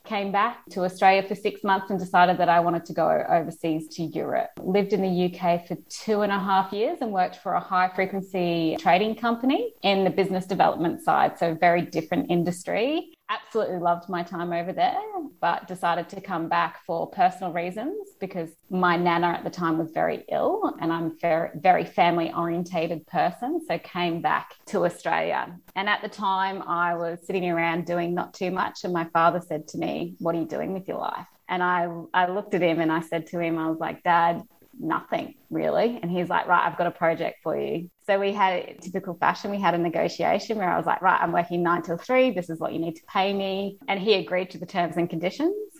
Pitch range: 170-195 Hz